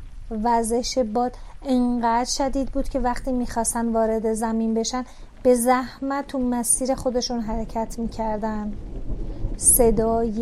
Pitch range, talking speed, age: 225-265 Hz, 110 wpm, 30-49